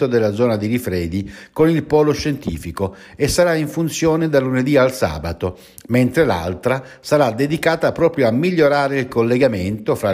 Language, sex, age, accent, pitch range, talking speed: Italian, male, 60-79, native, 95-140 Hz, 155 wpm